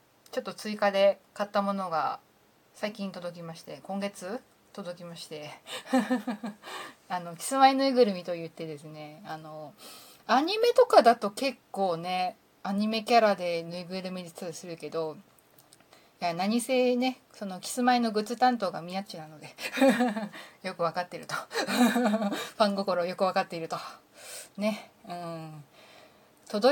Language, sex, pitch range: Japanese, female, 175-245 Hz